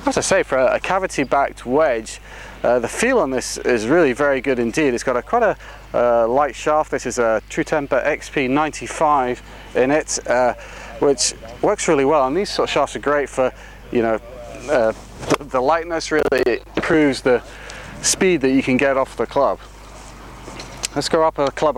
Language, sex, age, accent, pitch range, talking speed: English, male, 30-49, British, 120-150 Hz, 185 wpm